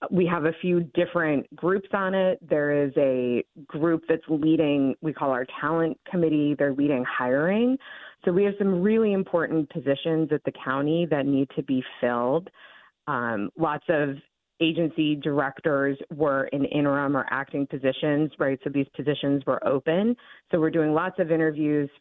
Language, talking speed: English, 165 wpm